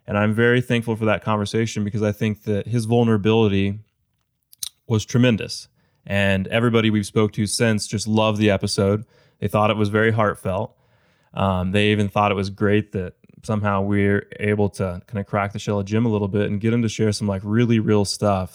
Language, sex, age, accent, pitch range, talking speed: English, male, 20-39, American, 100-110 Hz, 205 wpm